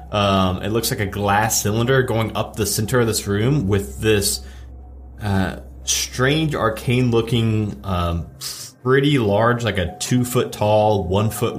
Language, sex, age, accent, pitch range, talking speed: English, male, 30-49, American, 95-110 Hz, 155 wpm